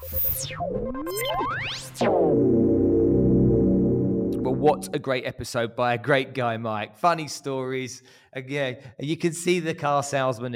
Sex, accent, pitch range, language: male, British, 105-130 Hz, English